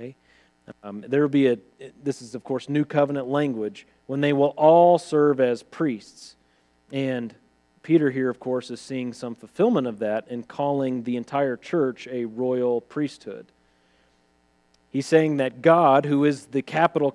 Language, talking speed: English, 160 wpm